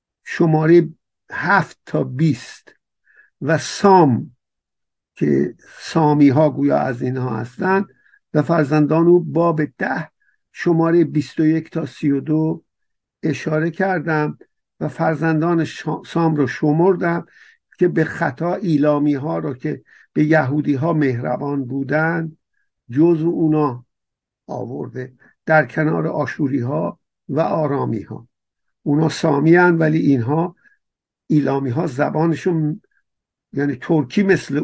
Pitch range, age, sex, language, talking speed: 145-170 Hz, 50-69, male, Persian, 110 wpm